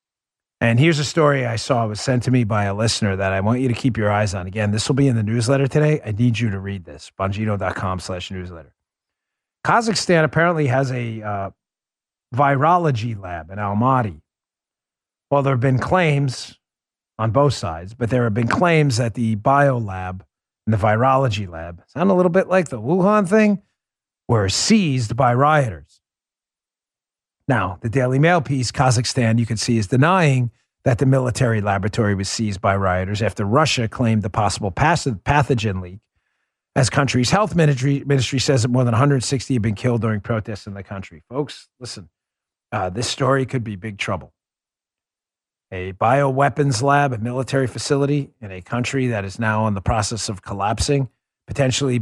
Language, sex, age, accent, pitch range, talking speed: English, male, 40-59, American, 105-140 Hz, 175 wpm